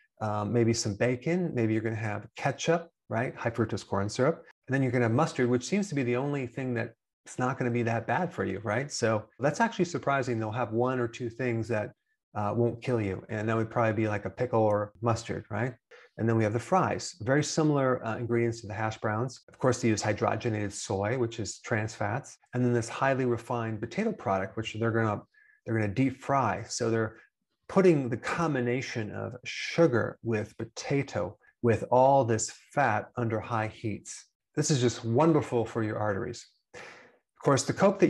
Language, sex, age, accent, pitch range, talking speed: English, male, 30-49, American, 110-130 Hz, 210 wpm